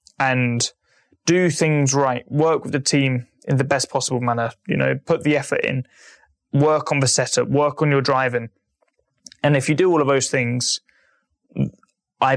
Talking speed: 175 wpm